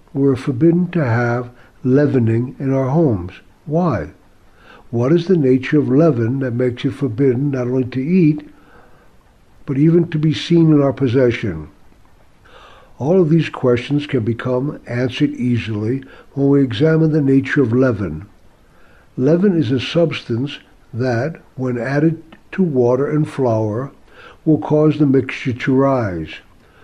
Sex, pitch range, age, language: male, 125-155 Hz, 60-79, English